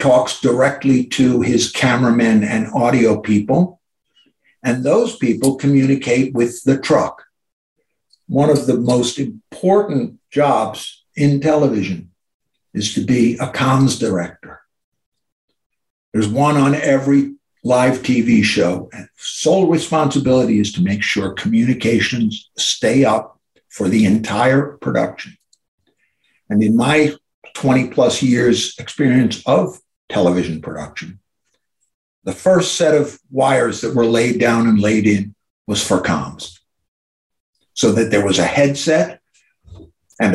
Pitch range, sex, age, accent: 105-140 Hz, male, 60-79, American